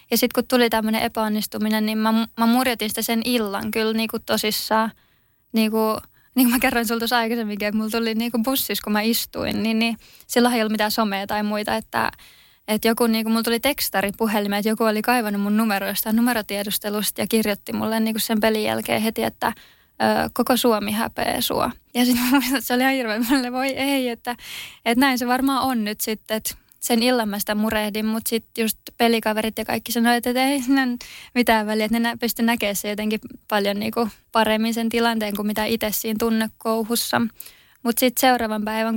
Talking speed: 190 wpm